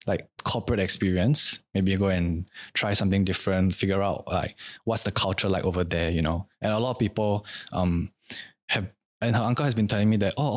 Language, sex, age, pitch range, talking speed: English, male, 20-39, 90-115 Hz, 215 wpm